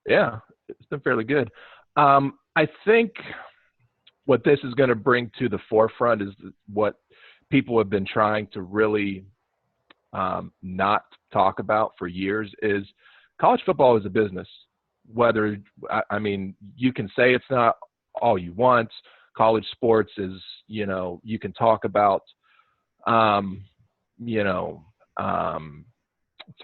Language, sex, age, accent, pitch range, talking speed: English, male, 40-59, American, 95-120 Hz, 140 wpm